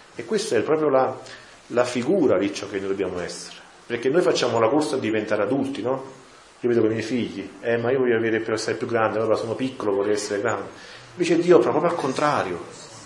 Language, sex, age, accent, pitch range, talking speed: Italian, male, 30-49, native, 120-185 Hz, 225 wpm